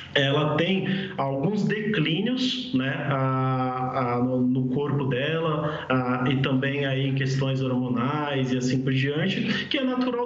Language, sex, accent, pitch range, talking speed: Portuguese, male, Brazilian, 140-190 Hz, 135 wpm